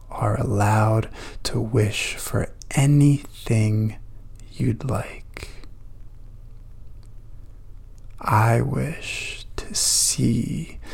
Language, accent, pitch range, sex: English, American, 105-115 Hz, male